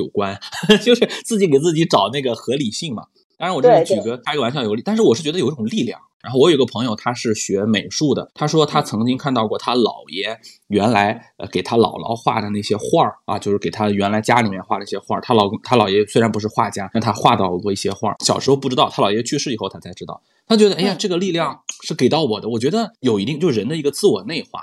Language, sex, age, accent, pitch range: Chinese, male, 20-39, native, 105-165 Hz